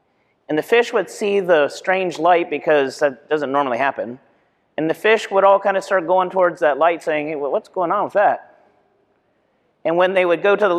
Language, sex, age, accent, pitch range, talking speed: English, male, 40-59, American, 145-190 Hz, 215 wpm